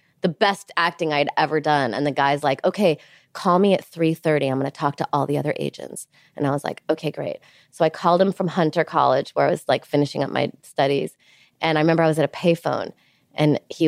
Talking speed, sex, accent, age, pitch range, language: 240 wpm, female, American, 20-39, 160-220 Hz, English